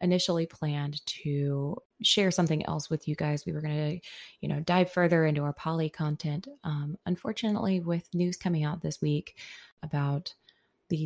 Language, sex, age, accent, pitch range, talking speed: English, female, 20-39, American, 150-180 Hz, 170 wpm